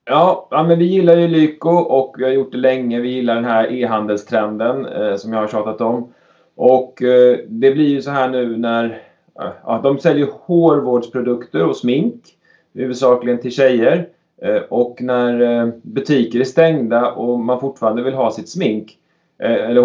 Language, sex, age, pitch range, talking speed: Swedish, male, 30-49, 115-135 Hz, 175 wpm